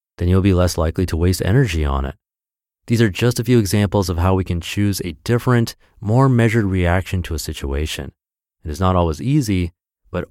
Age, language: 30-49, English